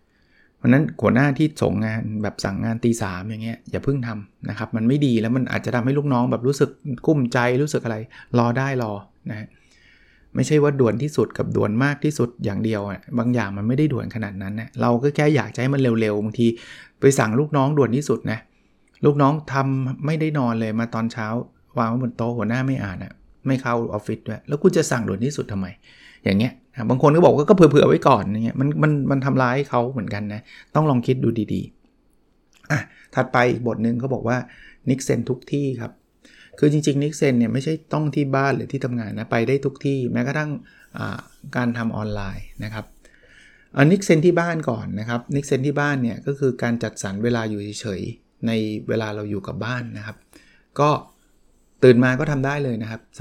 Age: 30-49